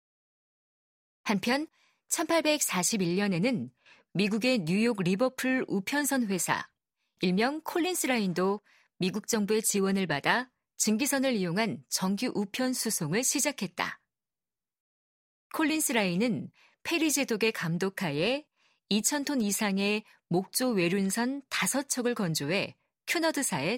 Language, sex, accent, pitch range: Korean, female, native, 190-260 Hz